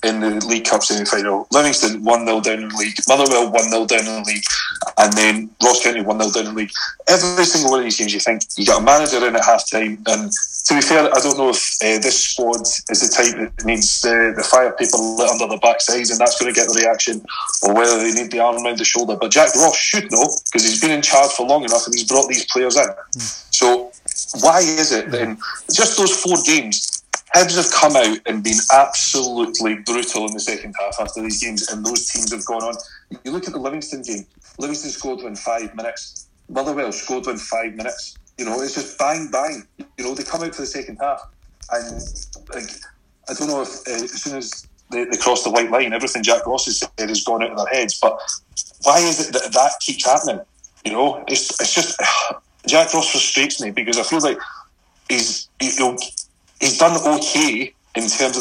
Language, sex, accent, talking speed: English, male, British, 225 wpm